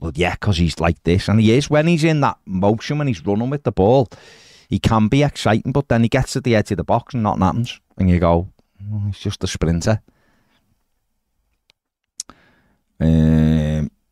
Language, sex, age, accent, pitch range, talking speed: English, male, 30-49, British, 85-110 Hz, 190 wpm